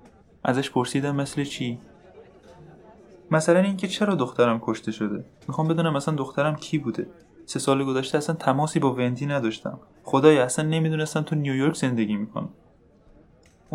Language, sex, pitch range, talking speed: Persian, male, 125-155 Hz, 135 wpm